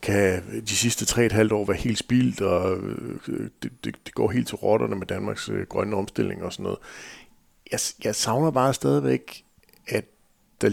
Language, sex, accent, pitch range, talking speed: Danish, male, native, 100-120 Hz, 180 wpm